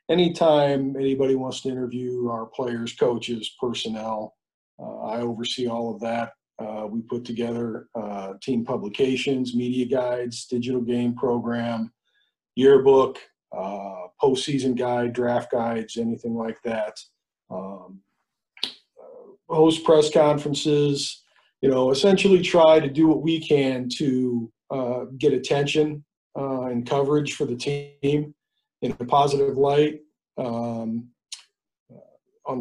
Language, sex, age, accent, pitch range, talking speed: English, male, 40-59, American, 120-150 Hz, 120 wpm